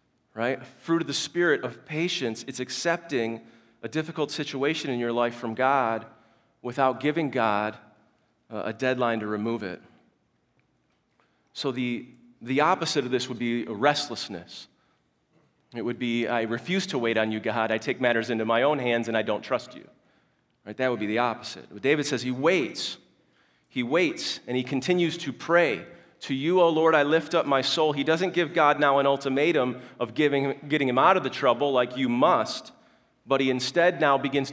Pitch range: 120-160 Hz